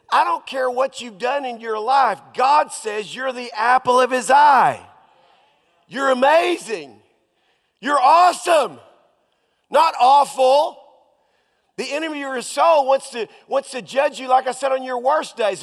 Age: 40-59